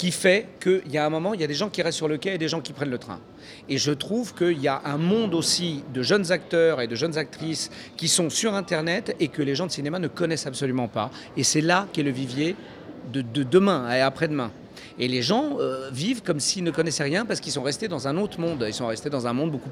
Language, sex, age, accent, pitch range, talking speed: French, male, 40-59, French, 135-175 Hz, 275 wpm